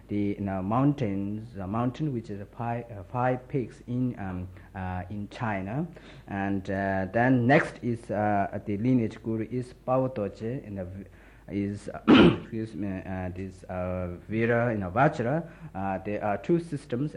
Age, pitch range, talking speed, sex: 60-79, 95-125 Hz, 155 wpm, male